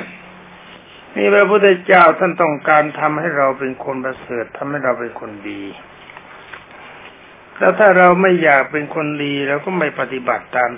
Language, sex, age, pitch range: Thai, male, 60-79, 125-160 Hz